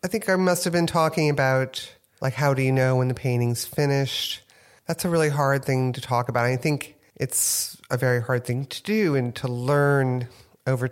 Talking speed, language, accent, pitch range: 210 wpm, English, American, 120-145 Hz